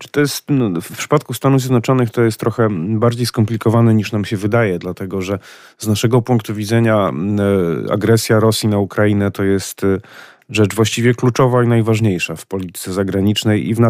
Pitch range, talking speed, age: 100-120 Hz, 140 wpm, 30-49